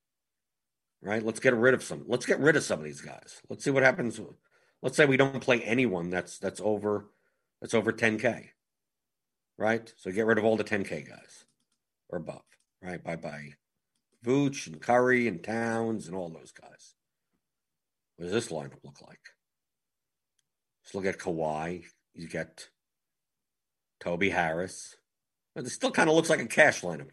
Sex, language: male, English